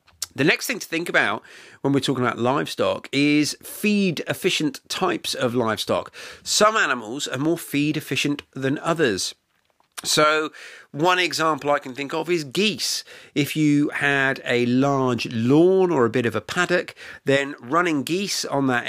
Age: 40-59